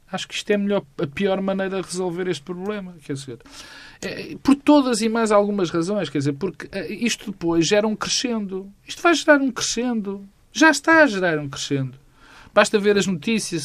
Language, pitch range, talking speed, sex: Portuguese, 135-190 Hz, 185 wpm, male